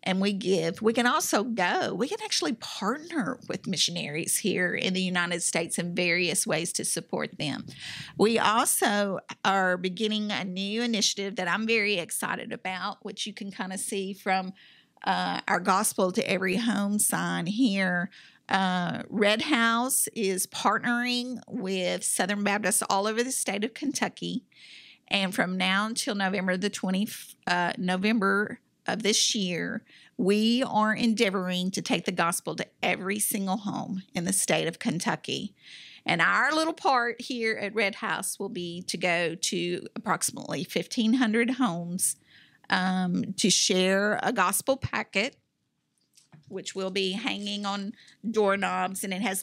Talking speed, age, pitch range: 150 wpm, 50-69, 185-225 Hz